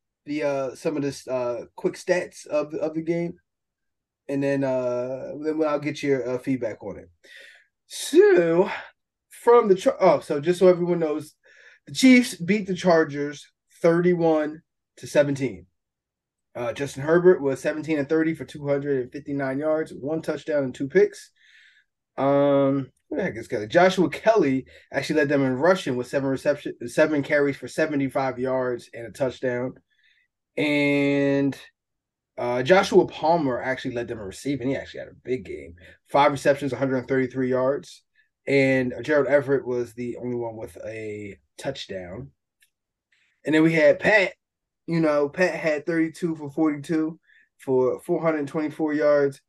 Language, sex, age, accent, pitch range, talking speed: English, male, 20-39, American, 135-165 Hz, 160 wpm